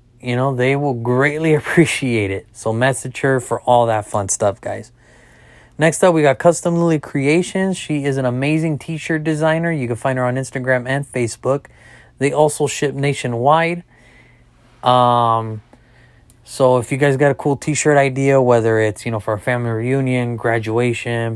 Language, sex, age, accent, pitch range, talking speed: English, male, 30-49, American, 115-145 Hz, 170 wpm